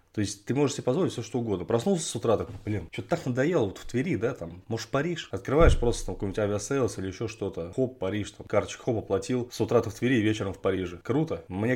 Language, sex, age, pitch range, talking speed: Russian, male, 20-39, 95-120 Hz, 245 wpm